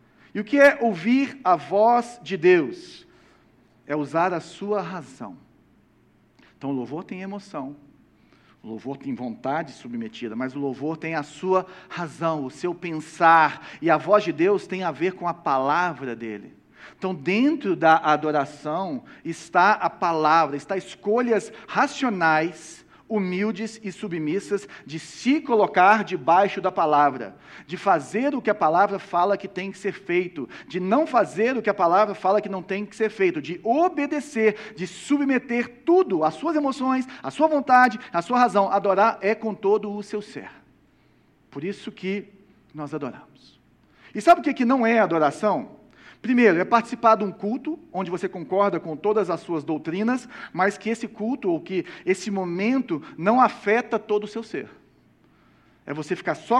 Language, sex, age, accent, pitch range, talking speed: Portuguese, male, 50-69, Brazilian, 170-240 Hz, 170 wpm